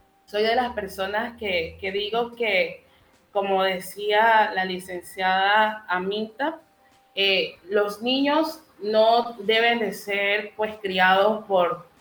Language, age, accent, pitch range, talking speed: Spanish, 30-49, Venezuelan, 180-215 Hz, 110 wpm